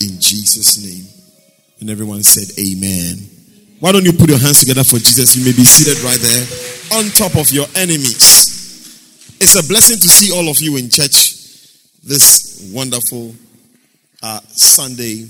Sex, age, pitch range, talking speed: male, 30-49, 110-160 Hz, 160 wpm